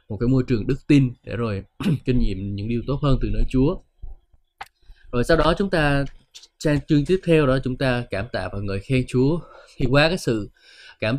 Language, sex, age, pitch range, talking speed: Vietnamese, male, 20-39, 105-140 Hz, 215 wpm